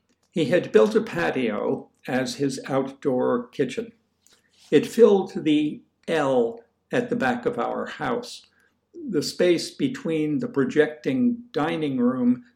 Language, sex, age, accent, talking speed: English, male, 60-79, American, 125 wpm